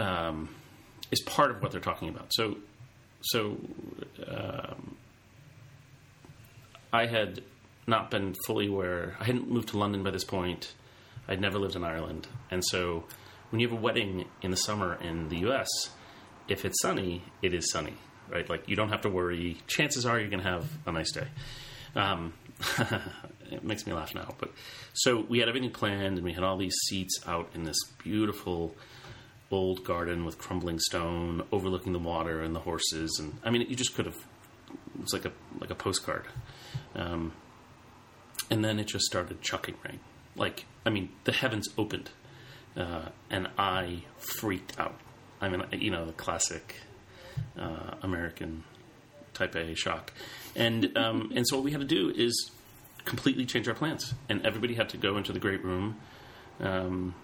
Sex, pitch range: male, 90-120 Hz